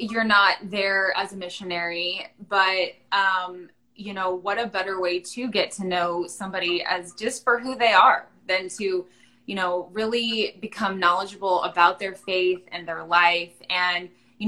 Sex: female